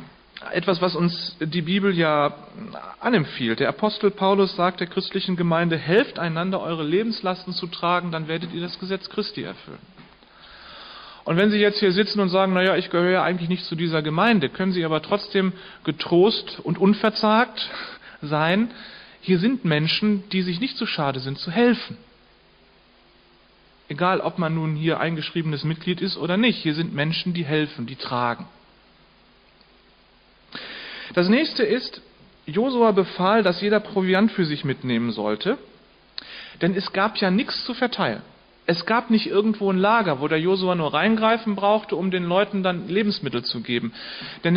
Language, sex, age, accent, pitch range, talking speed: German, male, 40-59, German, 165-210 Hz, 160 wpm